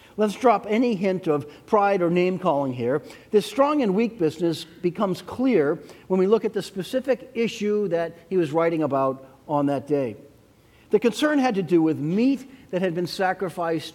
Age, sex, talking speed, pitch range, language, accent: 50-69, male, 185 wpm, 150-205 Hz, English, American